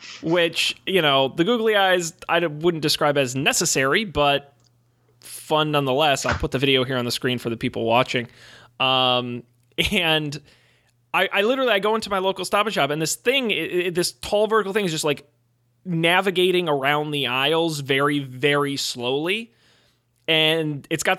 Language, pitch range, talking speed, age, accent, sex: English, 135-180 Hz, 170 wpm, 20-39, American, male